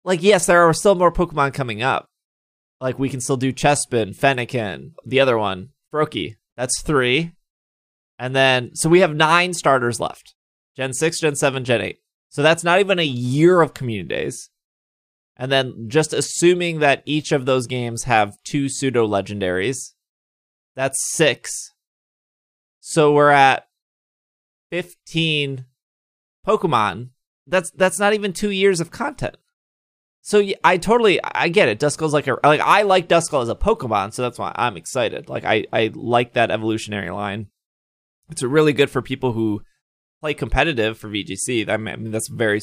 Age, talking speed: 30-49, 160 wpm